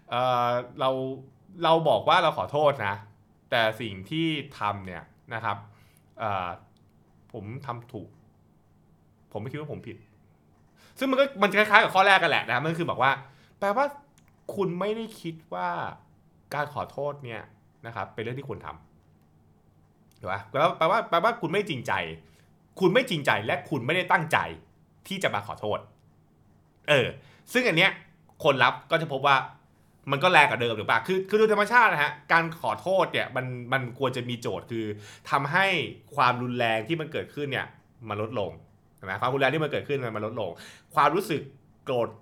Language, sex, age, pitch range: Thai, male, 20-39, 110-165 Hz